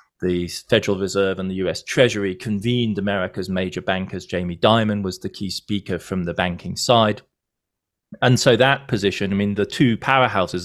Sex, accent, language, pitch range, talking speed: male, British, English, 90-115 Hz, 170 wpm